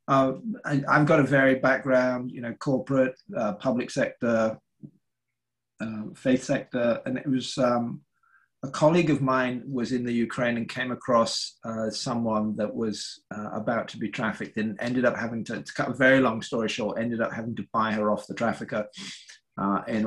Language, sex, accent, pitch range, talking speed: English, male, British, 110-130 Hz, 190 wpm